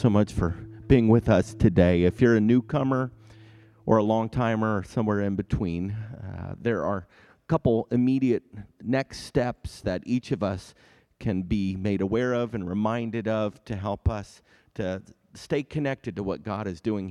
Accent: American